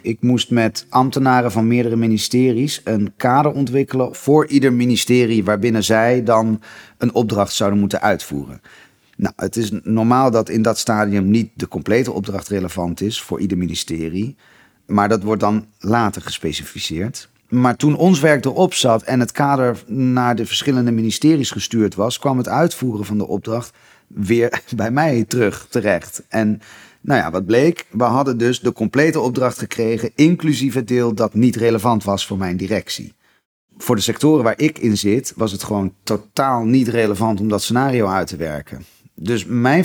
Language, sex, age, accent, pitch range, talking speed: Dutch, male, 40-59, Dutch, 100-125 Hz, 170 wpm